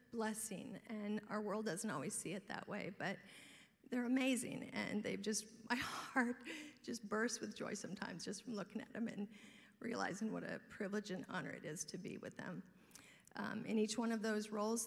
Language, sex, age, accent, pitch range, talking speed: English, female, 40-59, American, 205-235 Hz, 195 wpm